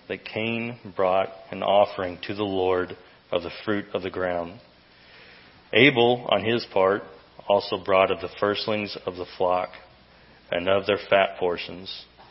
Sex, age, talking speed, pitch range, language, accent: male, 30-49, 150 wpm, 95-110 Hz, English, American